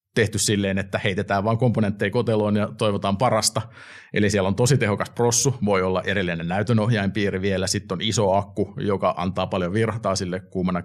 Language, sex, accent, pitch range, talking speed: Finnish, male, native, 95-110 Hz, 170 wpm